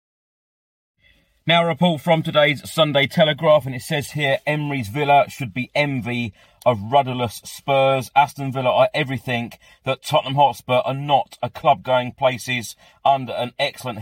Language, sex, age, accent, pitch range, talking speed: English, male, 30-49, British, 110-135 Hz, 145 wpm